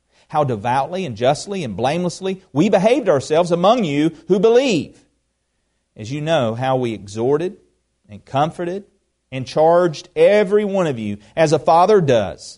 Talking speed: 150 wpm